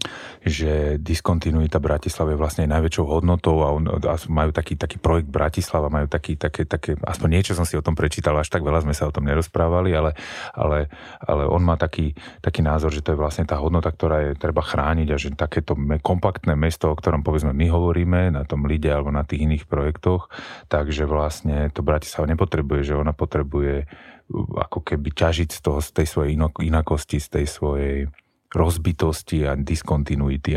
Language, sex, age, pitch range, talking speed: Slovak, male, 30-49, 75-85 Hz, 180 wpm